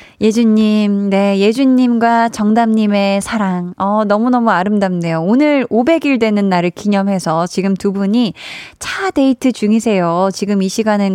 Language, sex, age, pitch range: Korean, female, 20-39, 195-250 Hz